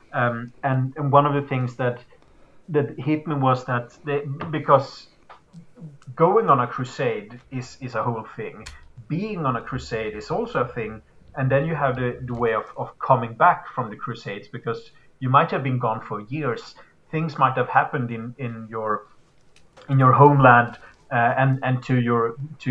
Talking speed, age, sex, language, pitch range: 185 wpm, 30-49, male, English, 120-140 Hz